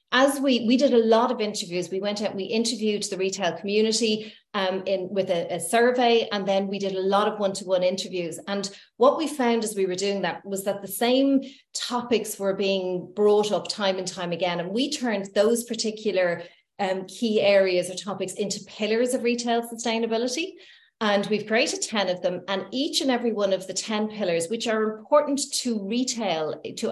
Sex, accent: female, Irish